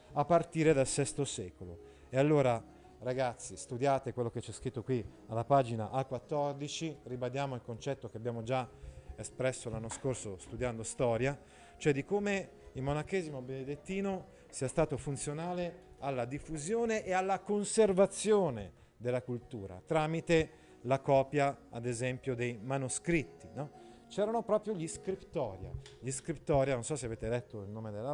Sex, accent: male, native